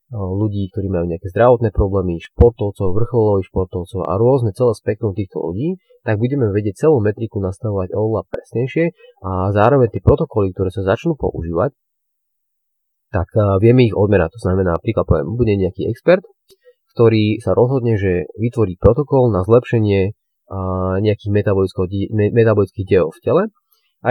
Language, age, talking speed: Slovak, 30-49, 135 wpm